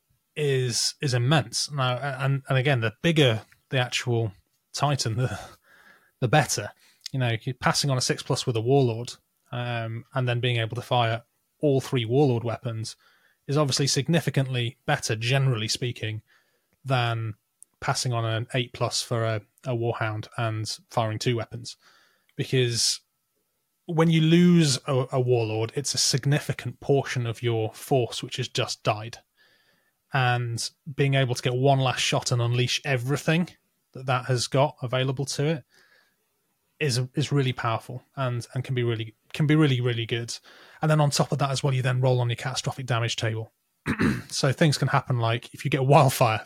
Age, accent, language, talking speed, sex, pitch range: 20-39, British, English, 170 wpm, male, 120-140 Hz